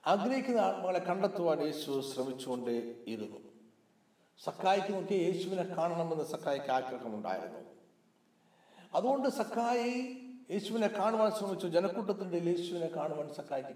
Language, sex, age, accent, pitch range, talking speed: Malayalam, male, 60-79, native, 145-205 Hz, 85 wpm